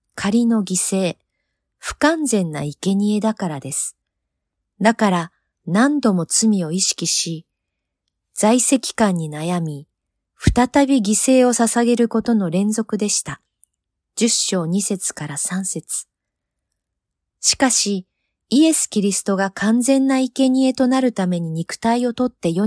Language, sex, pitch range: Japanese, female, 175-240 Hz